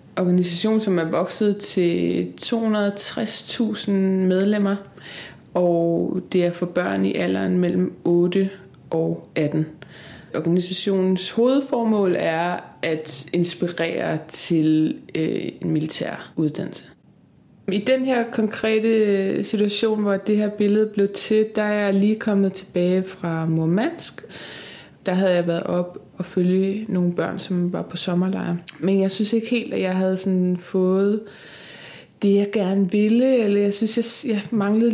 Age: 20-39